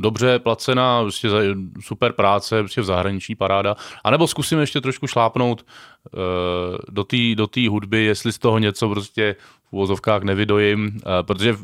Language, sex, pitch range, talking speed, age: Czech, male, 95-120 Hz, 160 wpm, 20-39